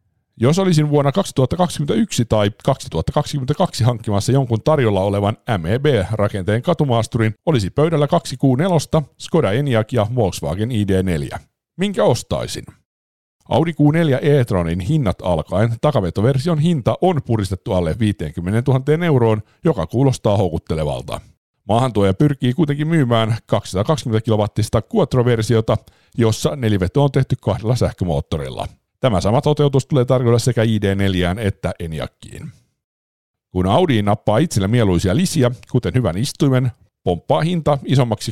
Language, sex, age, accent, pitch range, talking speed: Finnish, male, 50-69, native, 100-145 Hz, 115 wpm